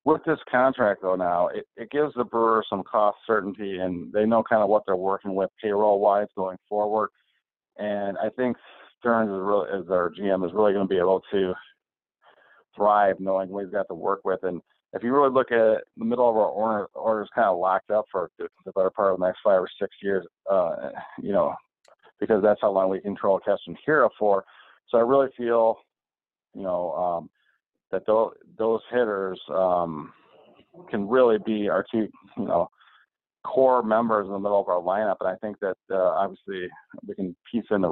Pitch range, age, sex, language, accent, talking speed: 95-115 Hz, 40-59, male, English, American, 205 wpm